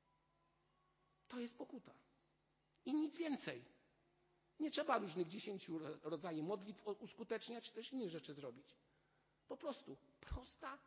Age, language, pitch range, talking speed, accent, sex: 50-69, Polish, 175-245 Hz, 115 wpm, native, male